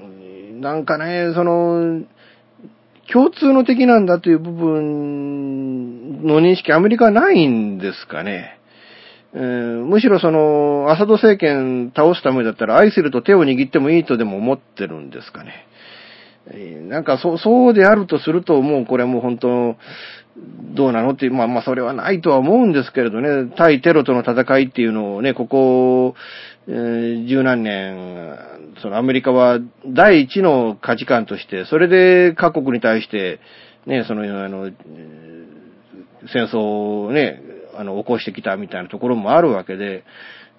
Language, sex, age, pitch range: Japanese, male, 40-59, 115-170 Hz